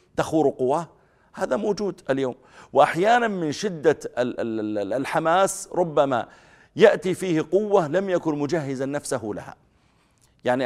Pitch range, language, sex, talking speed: 130-160 Hz, Arabic, male, 105 wpm